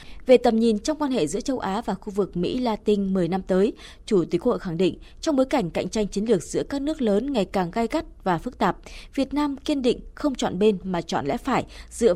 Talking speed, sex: 260 wpm, female